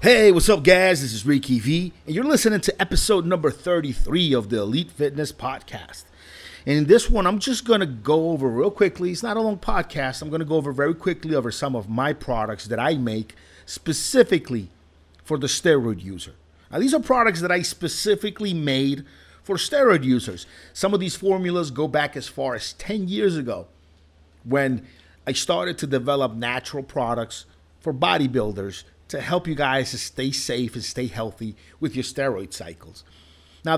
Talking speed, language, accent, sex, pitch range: 180 wpm, English, American, male, 105-170 Hz